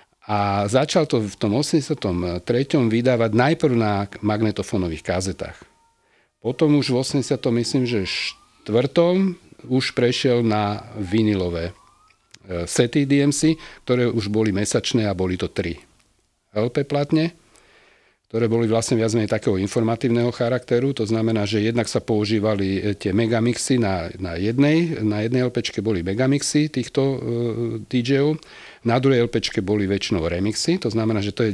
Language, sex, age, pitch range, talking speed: Slovak, male, 40-59, 105-130 Hz, 135 wpm